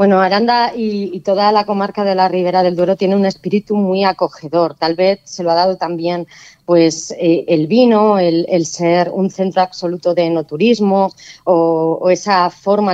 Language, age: Spanish, 20-39